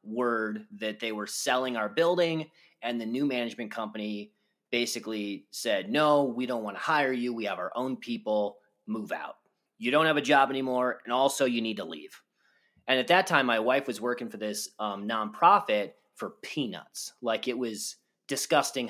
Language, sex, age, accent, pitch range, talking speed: English, male, 30-49, American, 120-160 Hz, 185 wpm